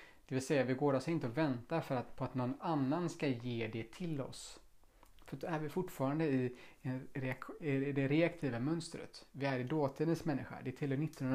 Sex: male